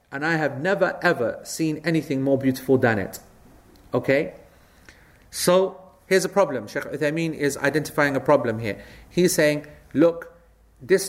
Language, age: English, 30-49